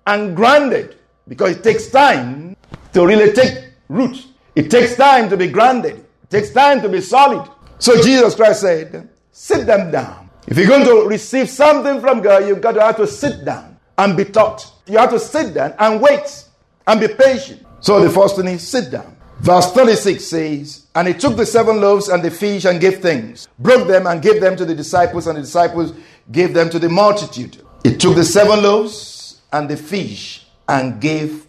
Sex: male